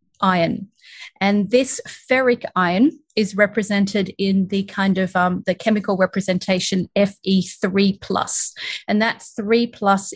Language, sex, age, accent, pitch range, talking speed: English, female, 30-49, Australian, 195-230 Hz, 120 wpm